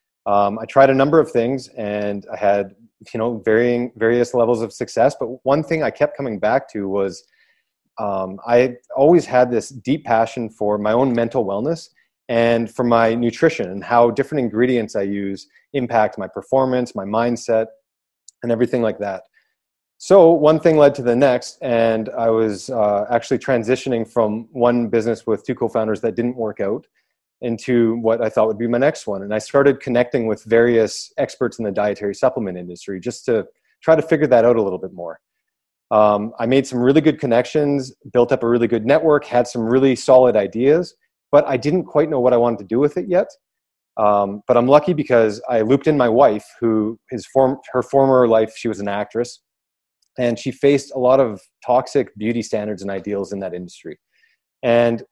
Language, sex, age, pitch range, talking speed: English, male, 30-49, 110-135 Hz, 195 wpm